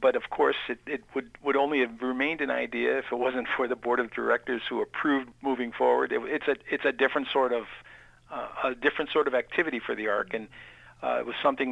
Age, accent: 50-69, American